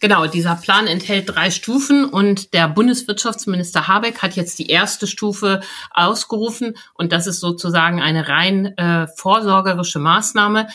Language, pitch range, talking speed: German, 160-195 Hz, 140 wpm